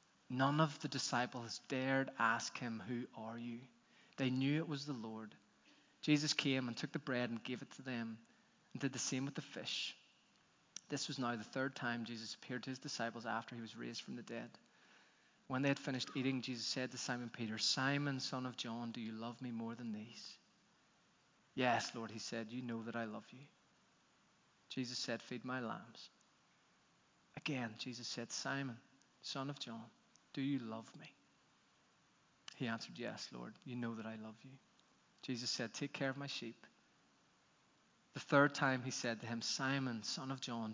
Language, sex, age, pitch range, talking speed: English, male, 20-39, 115-135 Hz, 185 wpm